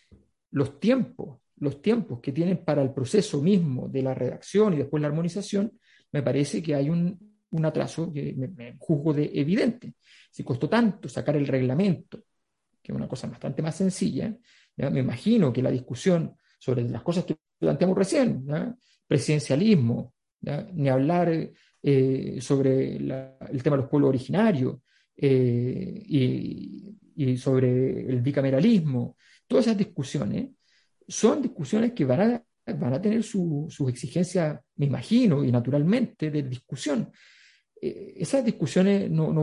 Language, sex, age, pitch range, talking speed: Spanish, male, 50-69, 135-200 Hz, 150 wpm